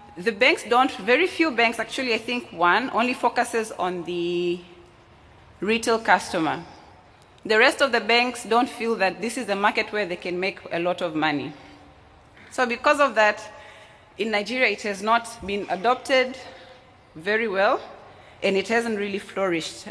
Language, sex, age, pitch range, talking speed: English, female, 20-39, 185-250 Hz, 165 wpm